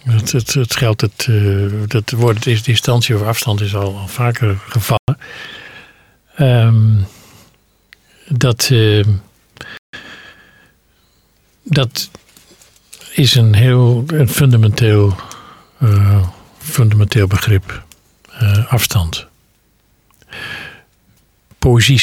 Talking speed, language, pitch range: 85 wpm, Dutch, 105-120 Hz